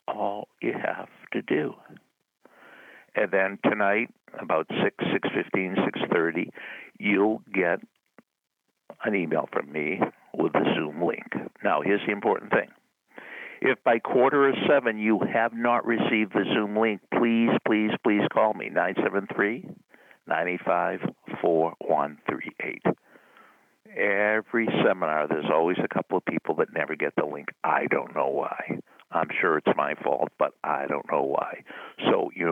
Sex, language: male, English